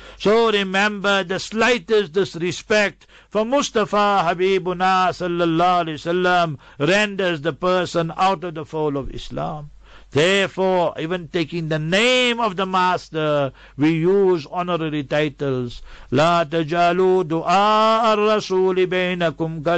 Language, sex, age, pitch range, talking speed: English, male, 60-79, 165-195 Hz, 105 wpm